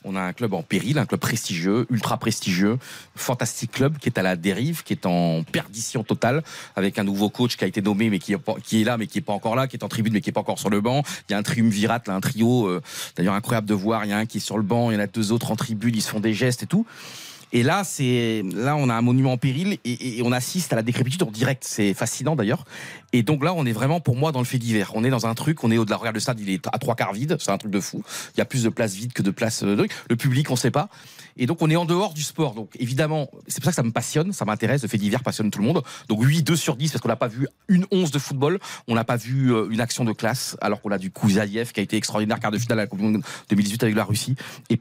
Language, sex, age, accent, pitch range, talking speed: French, male, 30-49, French, 105-135 Hz, 310 wpm